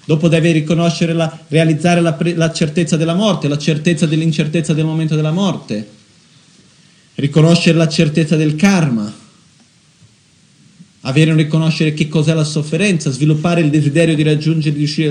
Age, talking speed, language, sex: 40-59, 150 wpm, Italian, male